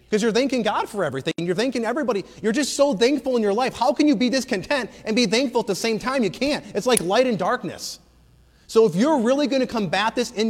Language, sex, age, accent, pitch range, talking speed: English, male, 30-49, American, 145-230 Hz, 250 wpm